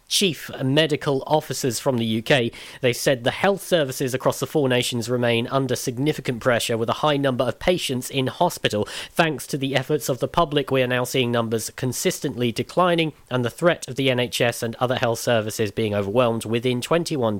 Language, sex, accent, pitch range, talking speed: English, male, British, 115-145 Hz, 190 wpm